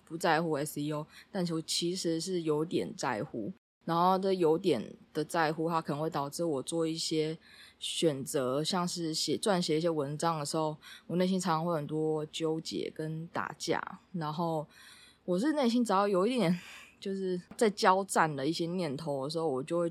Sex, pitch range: female, 155-180 Hz